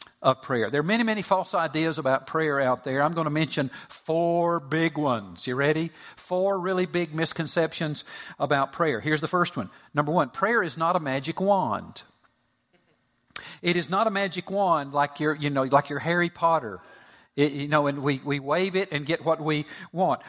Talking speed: 195 wpm